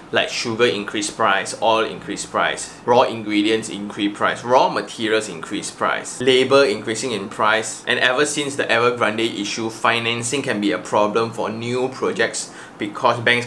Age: 20-39